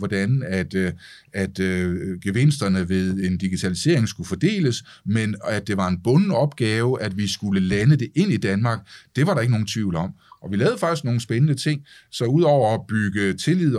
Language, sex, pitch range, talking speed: Danish, male, 100-140 Hz, 190 wpm